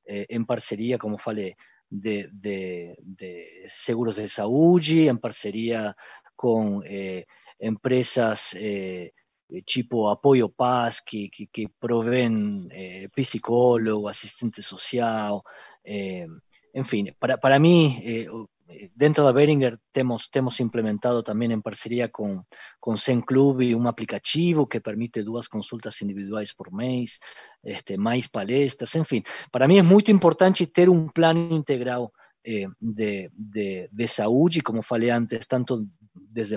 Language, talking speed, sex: Portuguese, 130 wpm, male